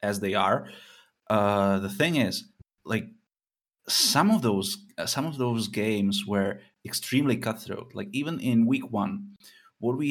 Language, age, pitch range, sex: English, 20-39, 105-135 Hz, male